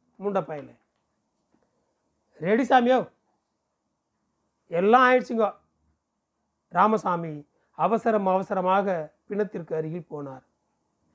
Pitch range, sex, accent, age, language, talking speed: 150-215 Hz, male, native, 40-59, Tamil, 65 wpm